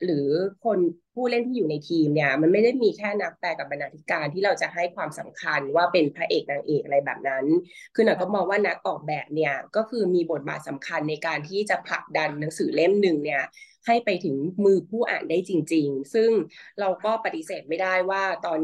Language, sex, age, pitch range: Thai, female, 20-39, 160-210 Hz